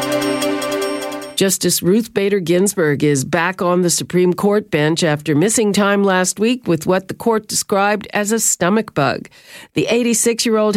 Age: 50-69